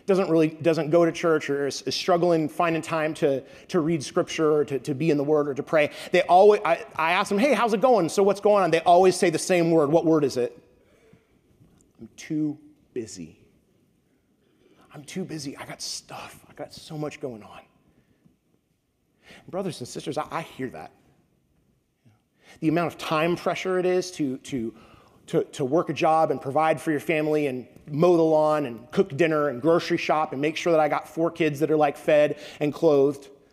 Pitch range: 150-185 Hz